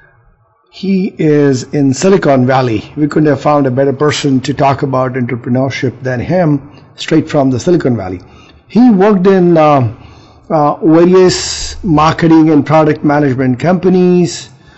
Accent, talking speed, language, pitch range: Indian, 140 wpm, English, 135-170 Hz